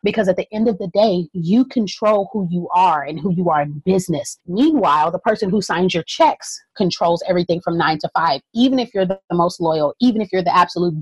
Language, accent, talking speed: English, American, 230 wpm